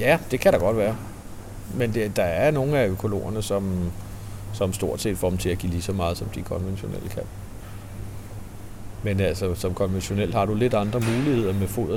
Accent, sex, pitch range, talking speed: native, male, 95-120 Hz, 195 wpm